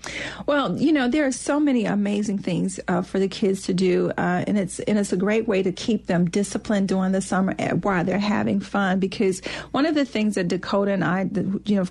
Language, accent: English, American